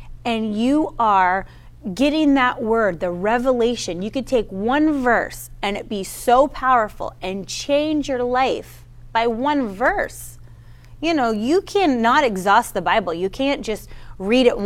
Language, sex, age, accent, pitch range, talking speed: English, female, 30-49, American, 175-250 Hz, 150 wpm